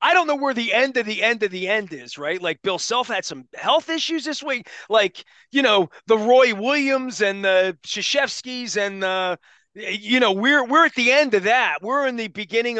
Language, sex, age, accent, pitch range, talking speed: English, male, 30-49, American, 200-265 Hz, 220 wpm